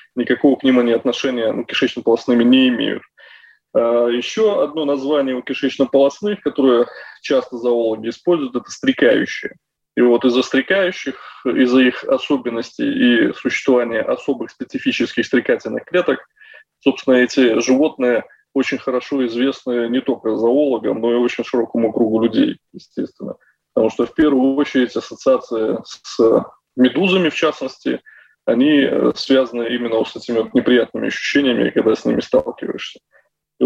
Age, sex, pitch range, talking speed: 20-39, male, 125-190 Hz, 125 wpm